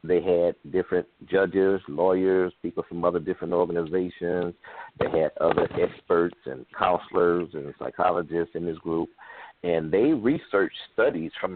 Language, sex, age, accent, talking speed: English, male, 50-69, American, 135 wpm